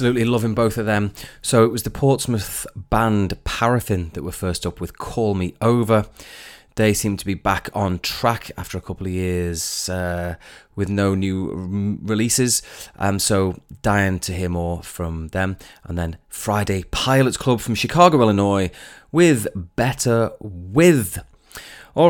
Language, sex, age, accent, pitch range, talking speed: English, male, 30-49, British, 90-115 Hz, 160 wpm